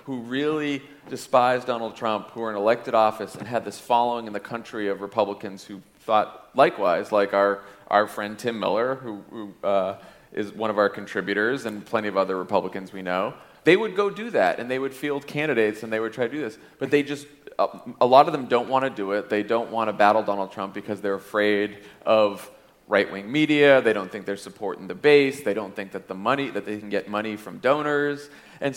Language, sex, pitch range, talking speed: English, male, 100-120 Hz, 220 wpm